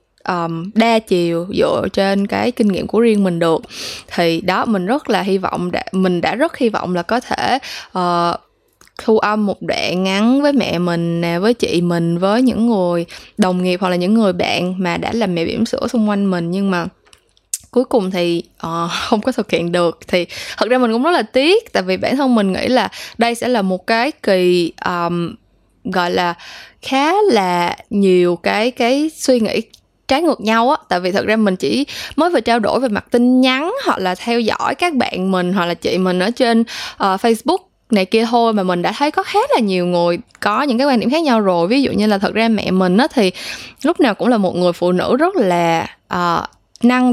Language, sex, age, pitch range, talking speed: Vietnamese, female, 20-39, 180-245 Hz, 220 wpm